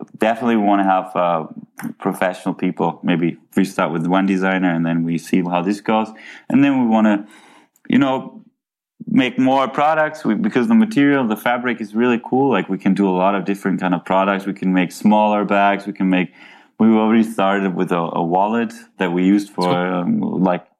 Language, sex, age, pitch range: English, male, 20-39, 90-110 Hz